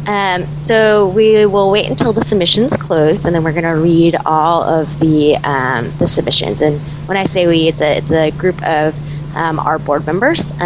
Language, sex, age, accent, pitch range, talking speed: English, female, 20-39, American, 150-170 Hz, 205 wpm